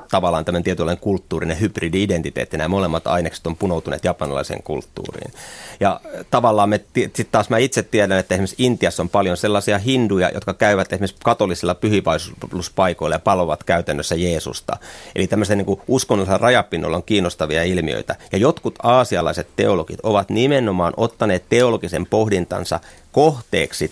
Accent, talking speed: native, 135 wpm